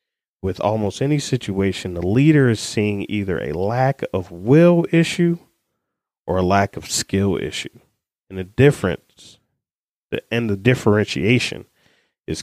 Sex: male